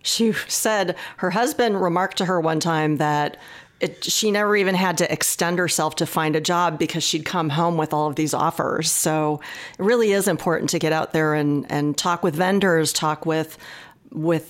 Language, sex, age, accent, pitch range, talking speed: English, female, 40-59, American, 155-185 Hz, 200 wpm